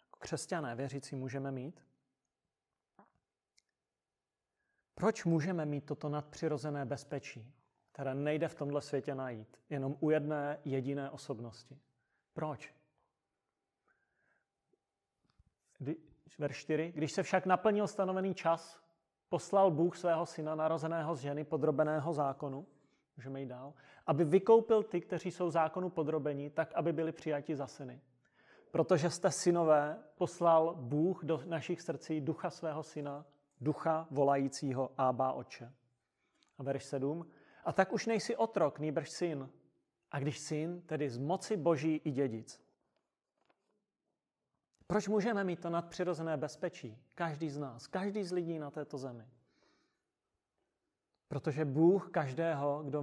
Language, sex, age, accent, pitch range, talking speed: Czech, male, 30-49, native, 140-170 Hz, 120 wpm